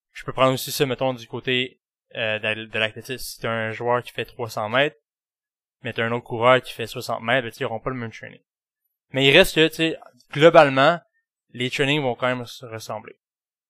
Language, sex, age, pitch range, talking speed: French, male, 20-39, 115-140 Hz, 200 wpm